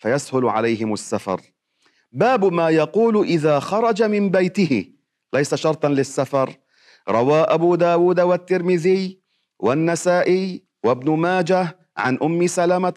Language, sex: Arabic, male